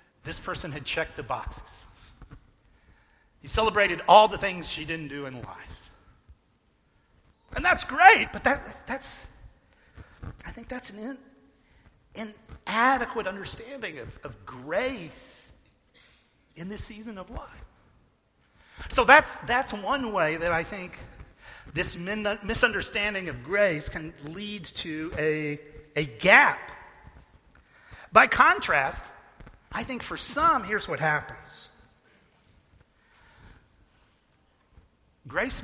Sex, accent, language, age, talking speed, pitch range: male, American, English, 40-59, 110 wpm, 160-230 Hz